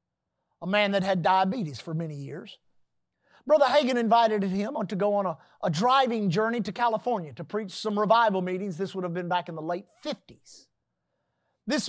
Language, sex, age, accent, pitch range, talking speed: English, male, 50-69, American, 195-270 Hz, 180 wpm